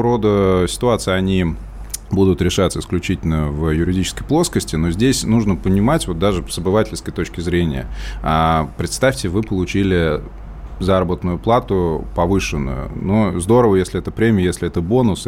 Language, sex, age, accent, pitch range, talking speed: Russian, male, 20-39, native, 85-110 Hz, 135 wpm